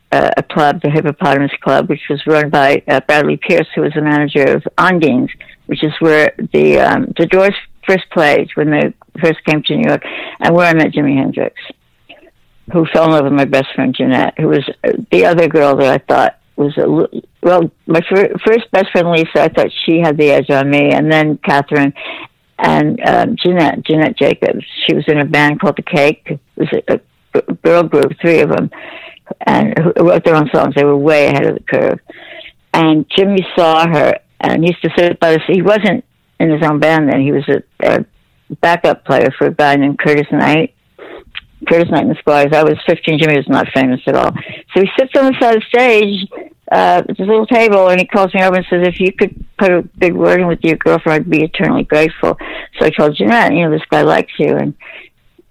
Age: 60-79